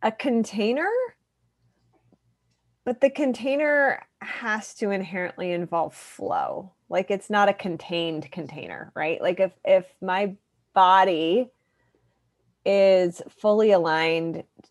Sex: female